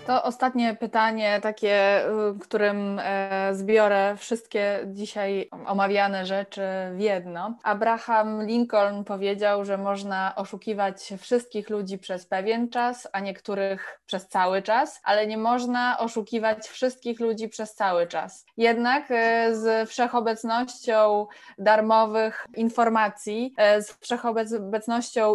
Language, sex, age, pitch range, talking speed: Polish, female, 20-39, 200-230 Hz, 105 wpm